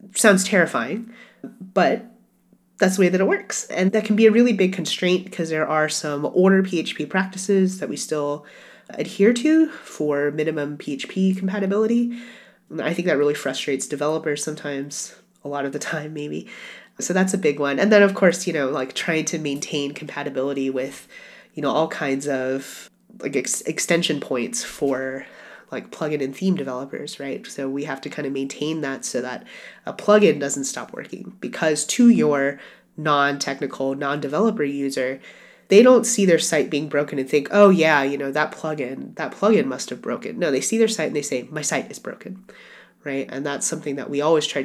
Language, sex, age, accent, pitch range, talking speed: English, female, 30-49, American, 140-190 Hz, 190 wpm